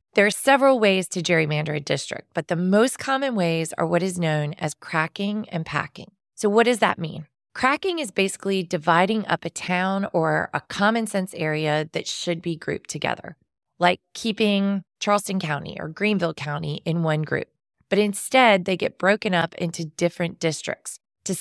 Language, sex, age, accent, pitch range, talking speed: English, female, 20-39, American, 170-210 Hz, 175 wpm